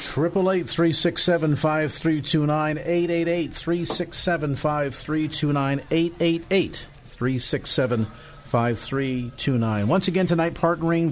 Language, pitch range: English, 120-155 Hz